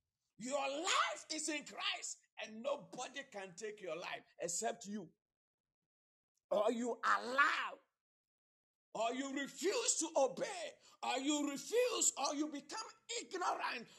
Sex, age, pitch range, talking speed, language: male, 50-69, 155-240 Hz, 120 wpm, English